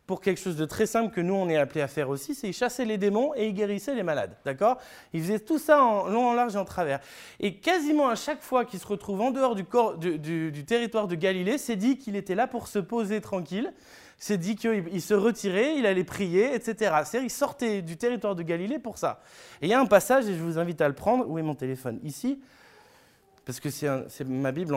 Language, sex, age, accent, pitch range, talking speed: French, male, 20-39, French, 155-230 Hz, 255 wpm